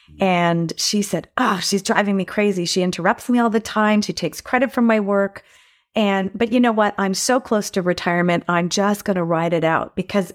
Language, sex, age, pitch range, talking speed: English, female, 30-49, 185-230 Hz, 220 wpm